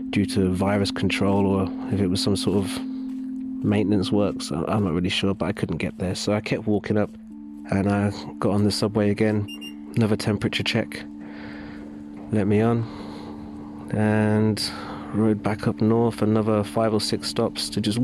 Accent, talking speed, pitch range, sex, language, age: British, 175 wpm, 95-120 Hz, male, English, 20-39